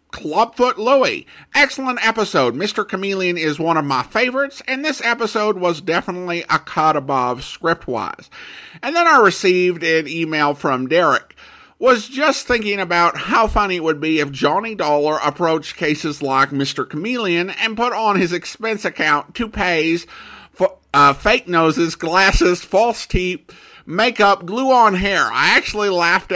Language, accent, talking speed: English, American, 145 wpm